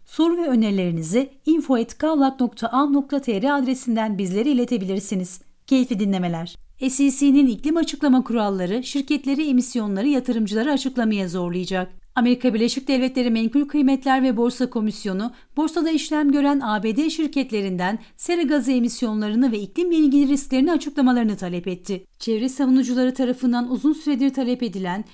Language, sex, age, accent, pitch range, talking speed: Turkish, female, 40-59, native, 220-280 Hz, 115 wpm